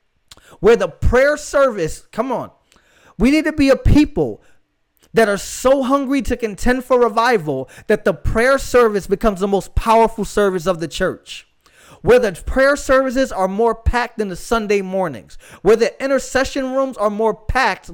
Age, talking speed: 20-39, 165 wpm